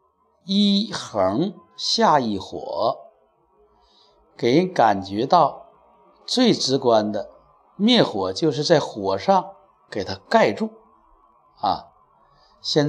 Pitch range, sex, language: 115-195 Hz, male, Chinese